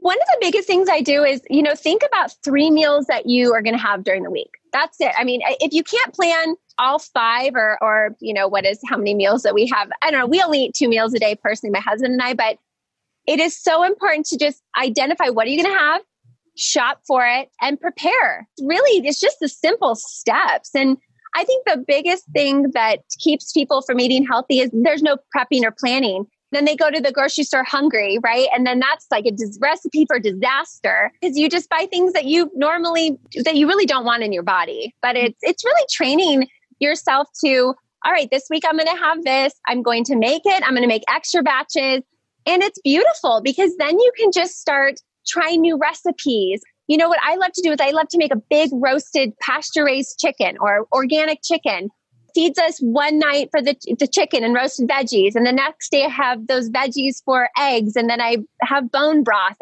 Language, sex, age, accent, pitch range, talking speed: English, female, 20-39, American, 245-320 Hz, 225 wpm